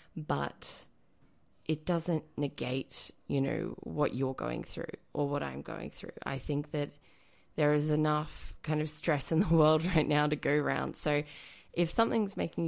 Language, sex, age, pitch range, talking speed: English, female, 20-39, 135-155 Hz, 170 wpm